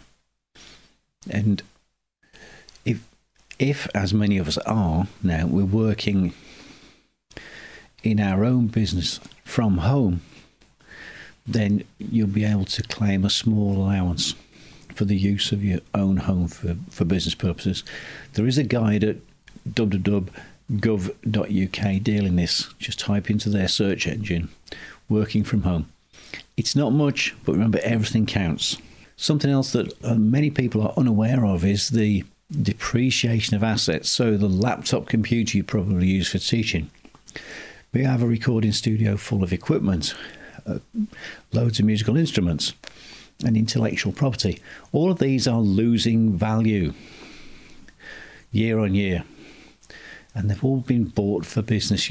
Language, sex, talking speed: English, male, 130 wpm